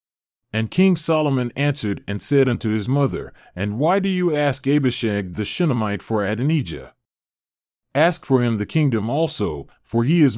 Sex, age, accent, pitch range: male, 30-49, American, 105-140 Hz